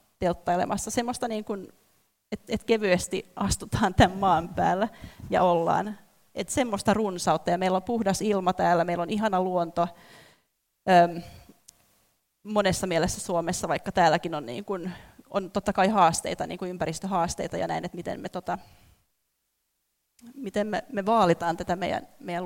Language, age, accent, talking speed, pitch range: Finnish, 30-49, native, 105 wpm, 170-200 Hz